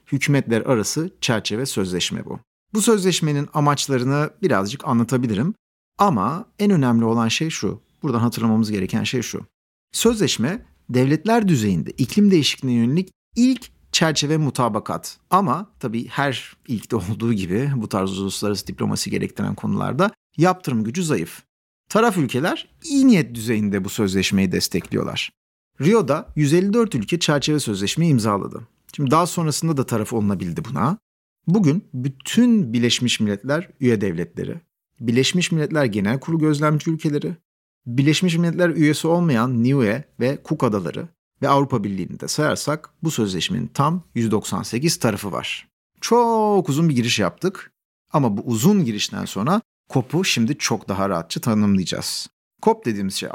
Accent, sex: native, male